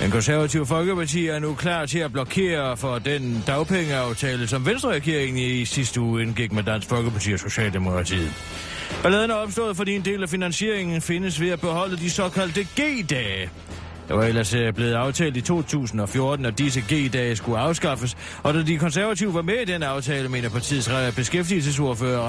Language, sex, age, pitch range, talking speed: Danish, male, 30-49, 110-170 Hz, 165 wpm